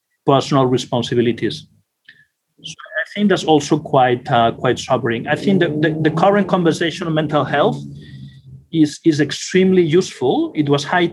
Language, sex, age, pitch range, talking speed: English, male, 40-59, 135-175 Hz, 150 wpm